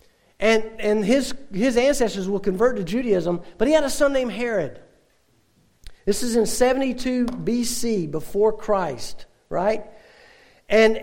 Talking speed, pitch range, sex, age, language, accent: 135 wpm, 195-245 Hz, male, 50-69, English, American